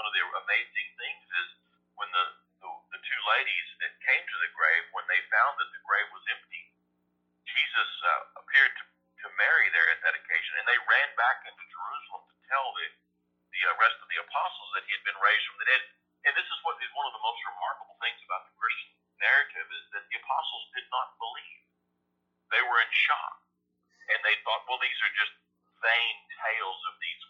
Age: 50-69